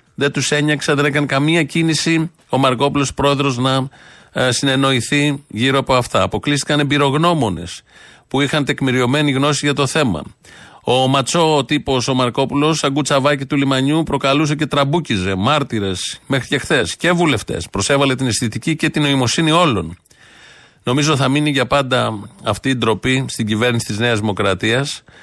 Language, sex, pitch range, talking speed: Greek, male, 115-140 Hz, 150 wpm